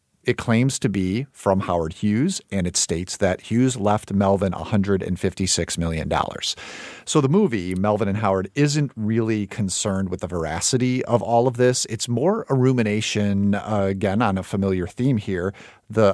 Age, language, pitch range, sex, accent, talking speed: 40-59, English, 95-120 Hz, male, American, 165 wpm